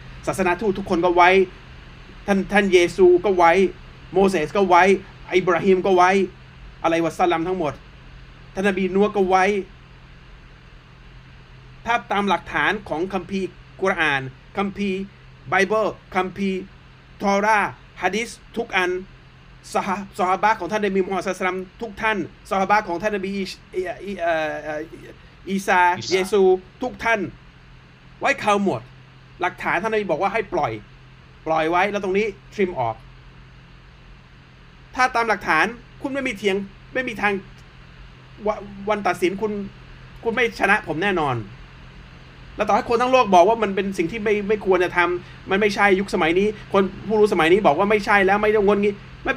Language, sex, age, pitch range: Thai, male, 30-49, 180-210 Hz